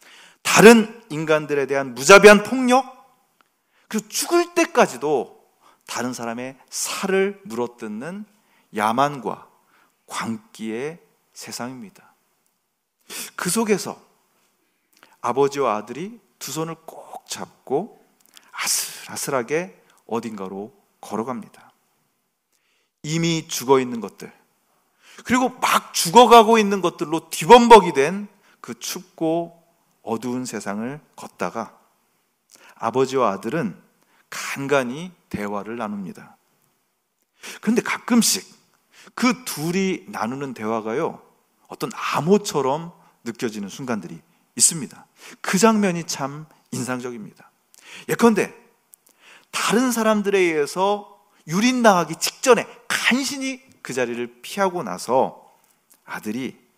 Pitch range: 130-215 Hz